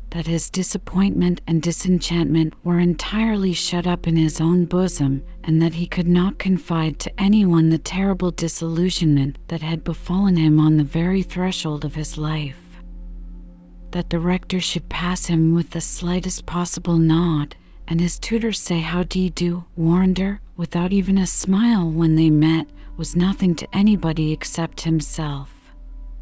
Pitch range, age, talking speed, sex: 155-180 Hz, 40-59, 160 wpm, female